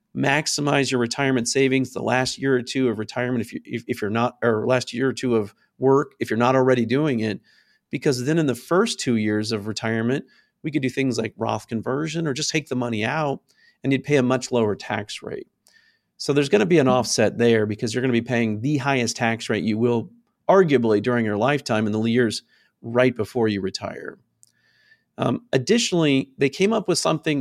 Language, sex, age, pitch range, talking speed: English, male, 40-59, 115-145 Hz, 215 wpm